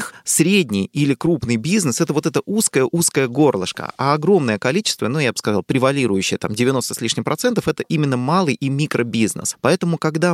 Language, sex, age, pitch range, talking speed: Russian, male, 20-39, 115-155 Hz, 170 wpm